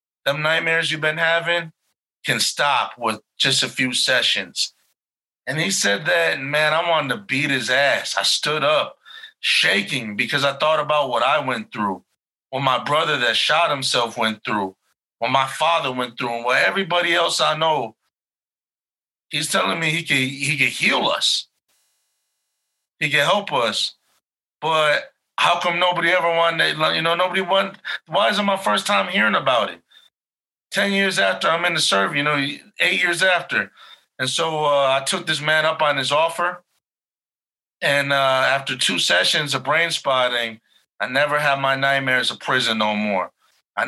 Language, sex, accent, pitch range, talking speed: English, male, American, 130-165 Hz, 170 wpm